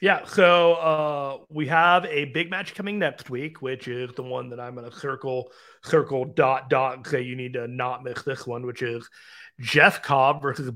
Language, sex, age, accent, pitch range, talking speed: English, male, 30-49, American, 125-155 Hz, 205 wpm